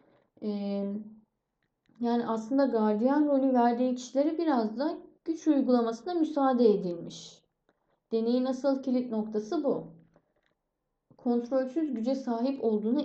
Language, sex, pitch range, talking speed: Turkish, female, 200-265 Hz, 95 wpm